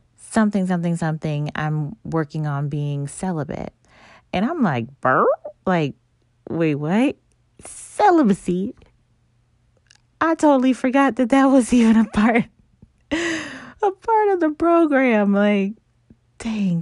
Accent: American